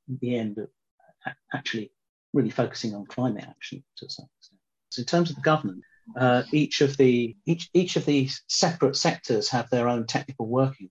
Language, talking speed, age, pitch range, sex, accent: English, 180 wpm, 50-69, 115-140 Hz, male, British